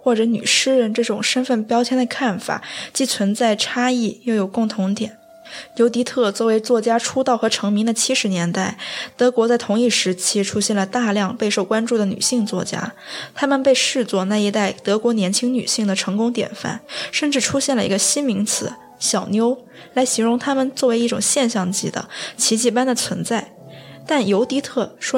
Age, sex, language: 20-39, female, Chinese